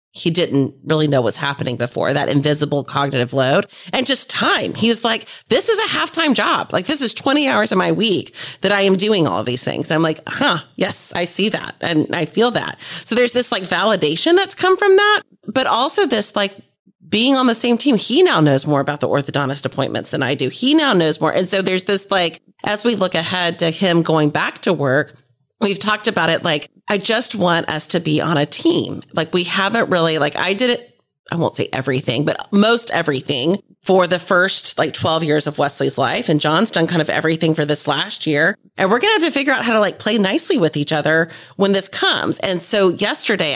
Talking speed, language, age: 225 wpm, English, 30-49